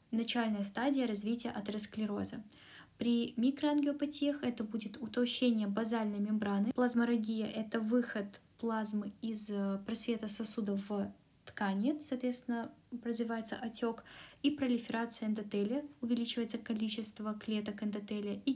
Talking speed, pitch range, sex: 105 wpm, 210-245 Hz, female